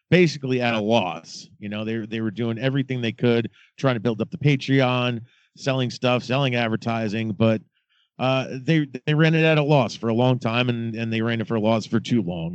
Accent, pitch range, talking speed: American, 110-130 Hz, 225 wpm